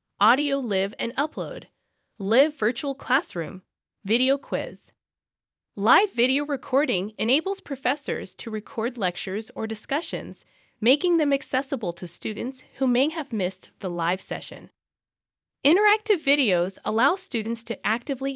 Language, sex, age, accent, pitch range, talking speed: English, female, 20-39, American, 190-270 Hz, 120 wpm